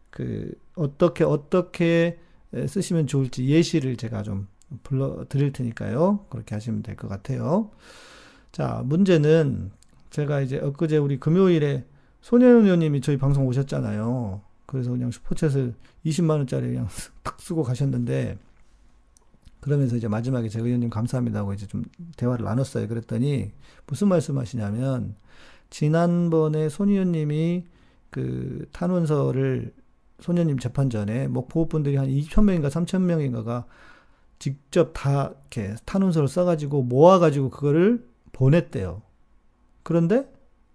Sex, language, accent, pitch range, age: male, Korean, native, 115-165 Hz, 40-59